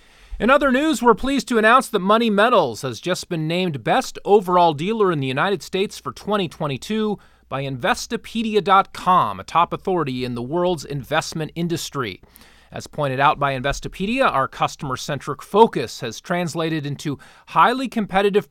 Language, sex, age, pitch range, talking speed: English, male, 30-49, 145-200 Hz, 150 wpm